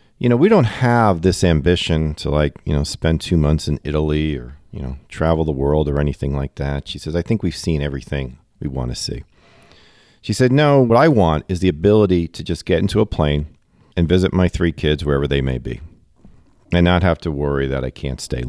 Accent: American